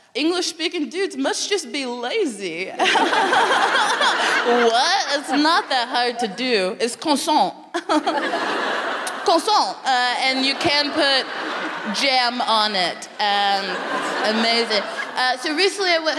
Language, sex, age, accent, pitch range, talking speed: English, female, 20-39, American, 220-305 Hz, 115 wpm